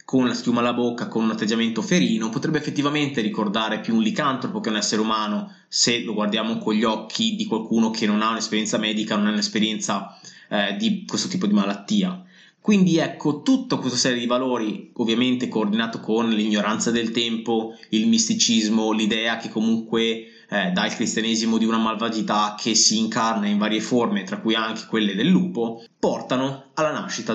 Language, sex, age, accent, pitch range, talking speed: Italian, male, 20-39, native, 110-185 Hz, 175 wpm